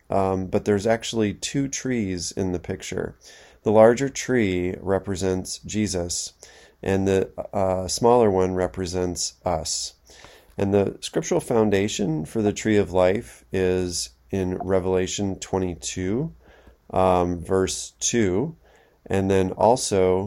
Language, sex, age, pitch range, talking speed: English, male, 30-49, 90-100 Hz, 120 wpm